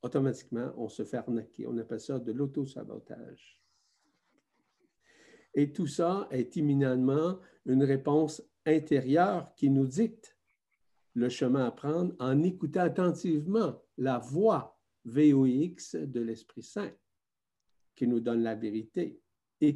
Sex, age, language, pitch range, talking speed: male, 50-69, French, 125-170 Hz, 120 wpm